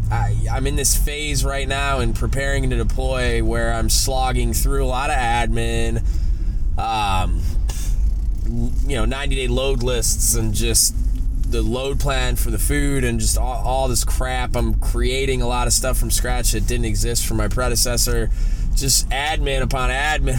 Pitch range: 105-135 Hz